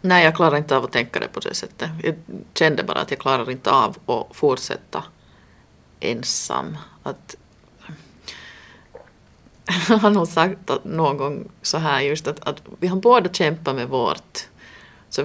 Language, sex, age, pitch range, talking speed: Finnish, female, 30-49, 150-190 Hz, 160 wpm